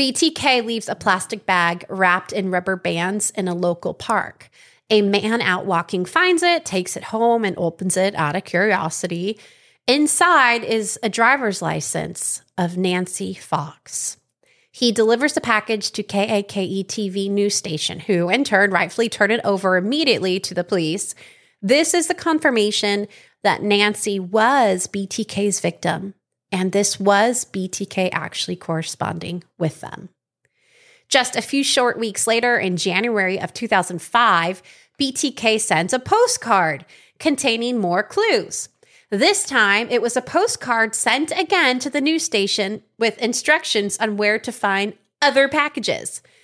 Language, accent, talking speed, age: English, American, 140 wpm, 30-49